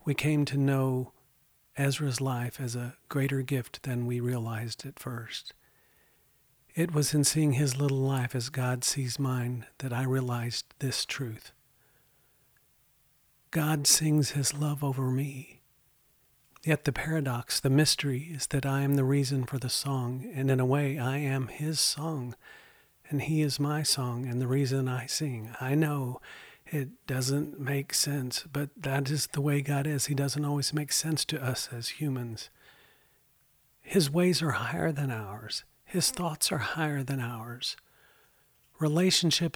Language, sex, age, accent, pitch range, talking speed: English, male, 50-69, American, 130-150 Hz, 160 wpm